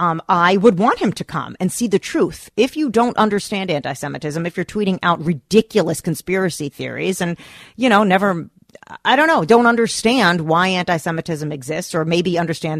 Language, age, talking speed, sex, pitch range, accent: English, 40-59, 180 wpm, female, 155-205 Hz, American